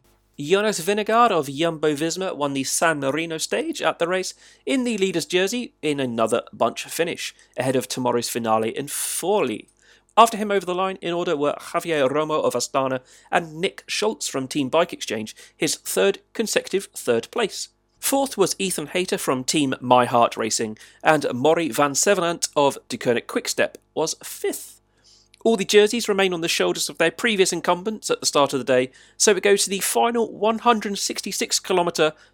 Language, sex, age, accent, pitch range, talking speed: English, male, 30-49, British, 130-200 Hz, 175 wpm